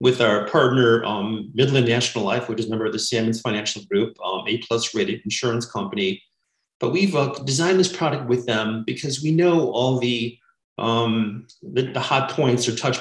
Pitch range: 115-130 Hz